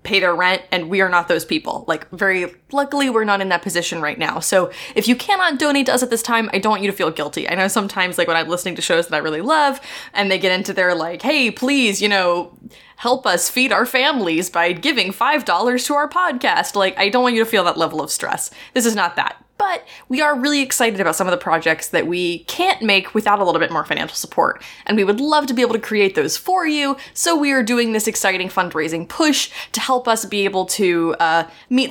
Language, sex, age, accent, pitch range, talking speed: English, female, 20-39, American, 180-270 Hz, 255 wpm